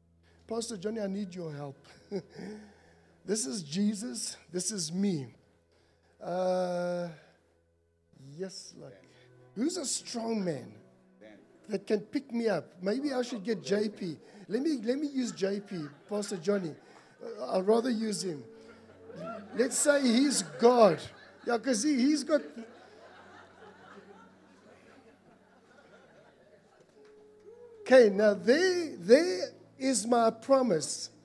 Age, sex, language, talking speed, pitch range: 60-79, male, English, 115 wpm, 180-250 Hz